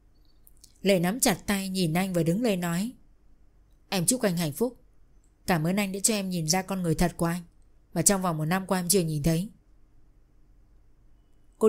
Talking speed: 200 wpm